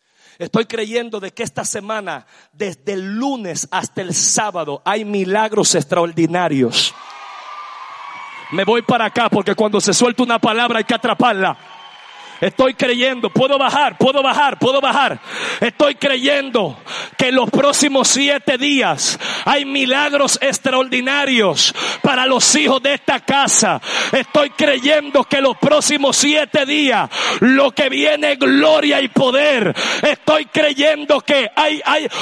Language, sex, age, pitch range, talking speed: Spanish, male, 40-59, 255-325 Hz, 130 wpm